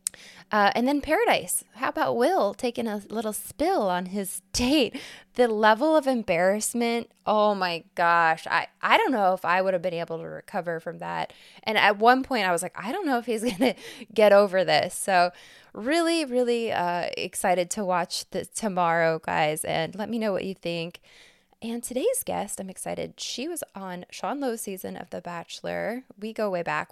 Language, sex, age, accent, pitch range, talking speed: English, female, 20-39, American, 175-225 Hz, 195 wpm